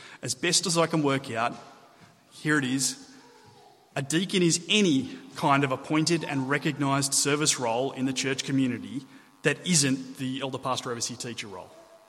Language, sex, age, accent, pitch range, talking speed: English, male, 30-49, Australian, 135-175 Hz, 165 wpm